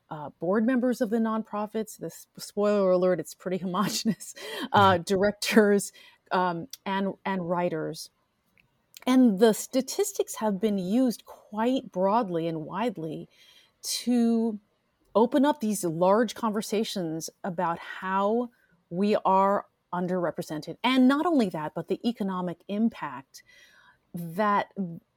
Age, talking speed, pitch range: 30-49, 110 wpm, 175-220 Hz